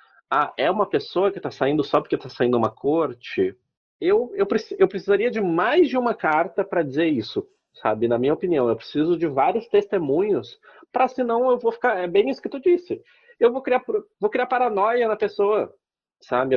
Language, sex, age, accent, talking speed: Portuguese, male, 30-49, Brazilian, 195 wpm